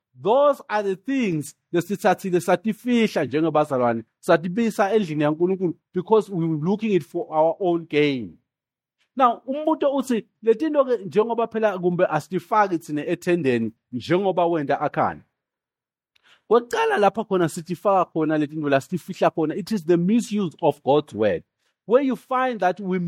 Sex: male